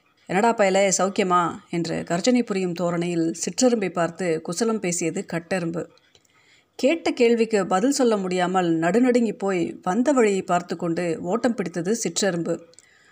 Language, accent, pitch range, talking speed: Tamil, native, 175-235 Hz, 120 wpm